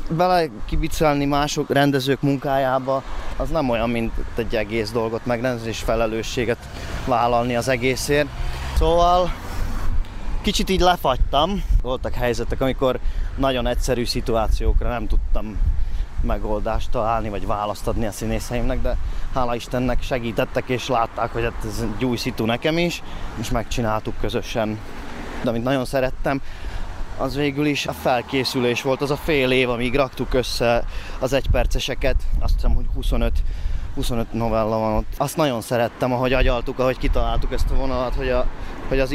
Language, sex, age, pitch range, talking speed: Hungarian, male, 20-39, 115-135 Hz, 140 wpm